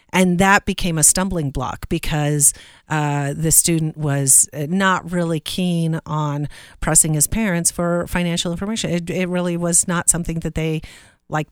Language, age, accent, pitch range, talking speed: English, 40-59, American, 150-200 Hz, 155 wpm